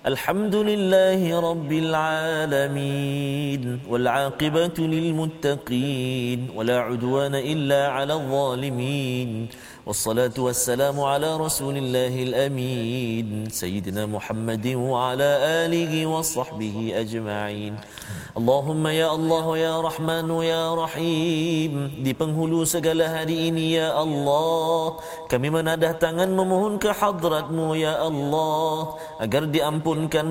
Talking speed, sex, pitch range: 90 wpm, male, 130-160 Hz